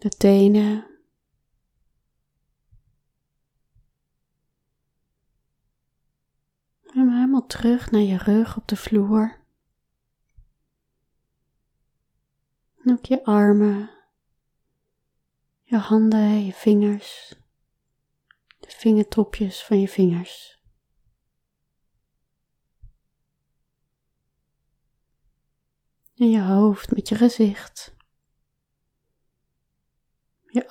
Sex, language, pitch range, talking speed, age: female, English, 170-220 Hz, 60 wpm, 30-49